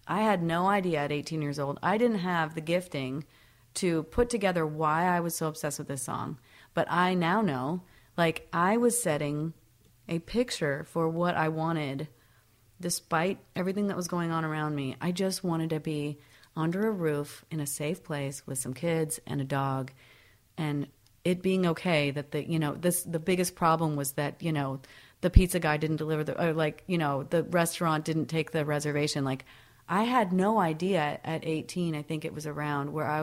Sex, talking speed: female, 195 wpm